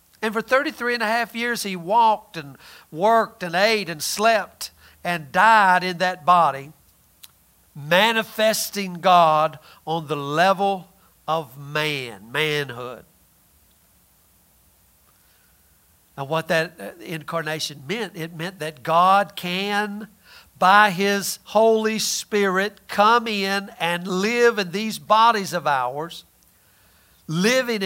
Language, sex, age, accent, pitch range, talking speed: English, male, 60-79, American, 145-210 Hz, 110 wpm